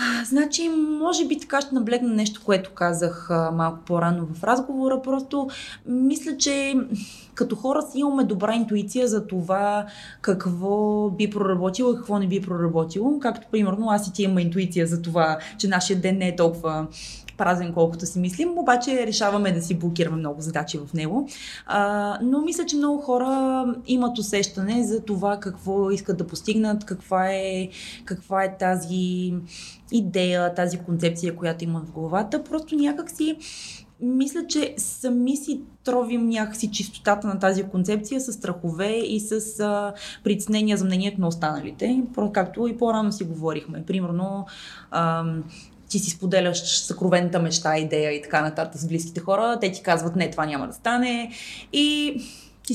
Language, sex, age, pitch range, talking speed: Bulgarian, female, 20-39, 180-250 Hz, 155 wpm